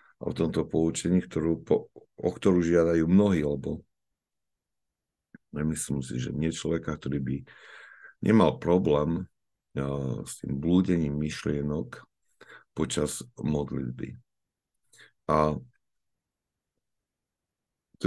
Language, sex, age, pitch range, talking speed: Slovak, male, 50-69, 75-90 Hz, 95 wpm